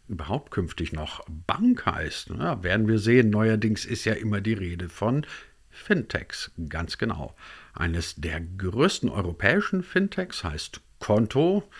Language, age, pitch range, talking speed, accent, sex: German, 50-69, 85-120 Hz, 130 wpm, German, male